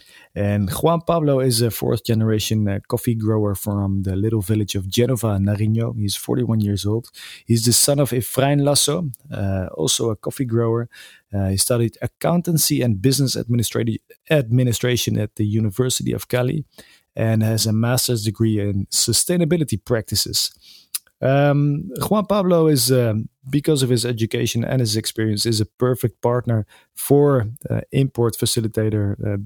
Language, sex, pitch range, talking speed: English, male, 110-135 Hz, 145 wpm